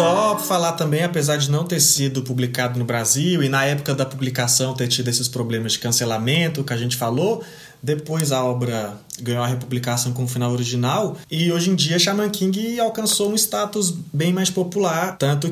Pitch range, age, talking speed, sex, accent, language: 125-165 Hz, 20-39, 195 wpm, male, Brazilian, Portuguese